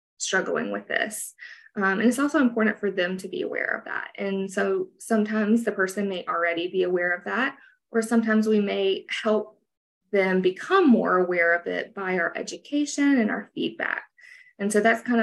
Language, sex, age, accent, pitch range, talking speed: English, female, 20-39, American, 190-235 Hz, 185 wpm